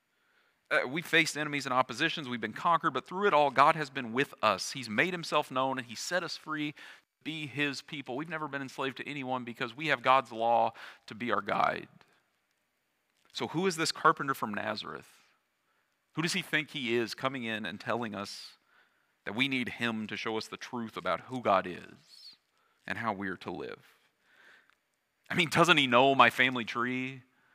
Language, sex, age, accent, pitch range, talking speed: English, male, 40-59, American, 115-145 Hz, 195 wpm